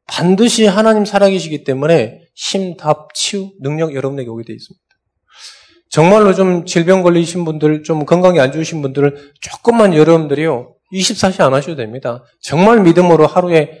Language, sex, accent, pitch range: Korean, male, native, 130-185 Hz